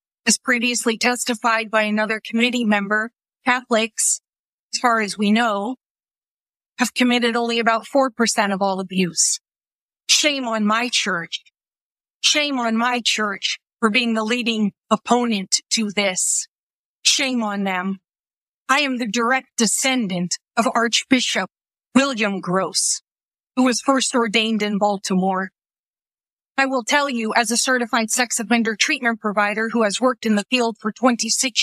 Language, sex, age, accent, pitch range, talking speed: English, female, 40-59, American, 205-250 Hz, 140 wpm